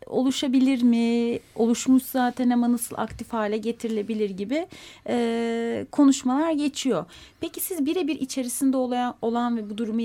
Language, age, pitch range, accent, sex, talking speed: Turkish, 30-49, 210-245 Hz, native, female, 130 wpm